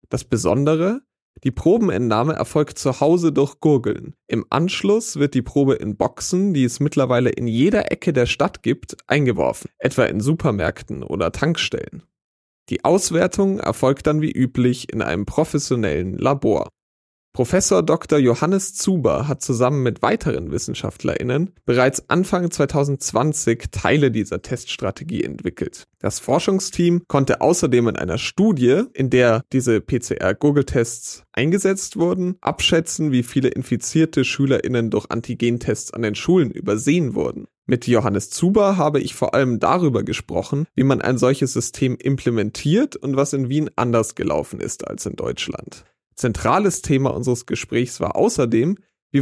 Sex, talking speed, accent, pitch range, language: male, 140 wpm, German, 120-160 Hz, German